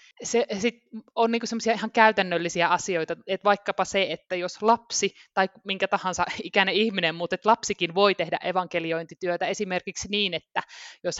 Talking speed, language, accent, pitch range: 150 wpm, Finnish, native, 170-205 Hz